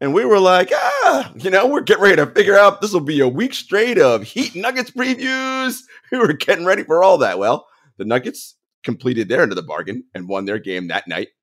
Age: 30-49